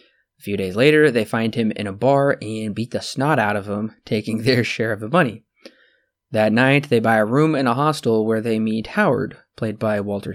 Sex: male